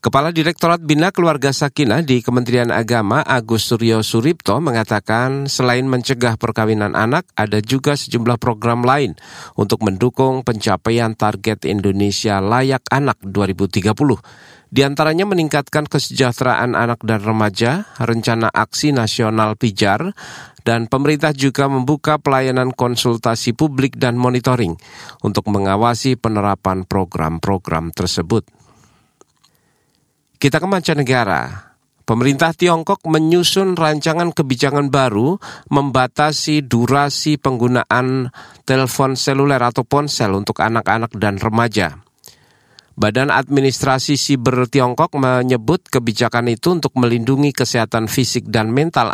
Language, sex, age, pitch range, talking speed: Indonesian, male, 40-59, 115-140 Hz, 105 wpm